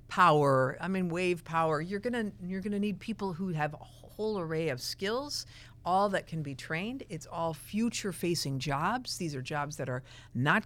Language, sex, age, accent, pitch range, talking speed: English, female, 50-69, American, 130-180 Hz, 205 wpm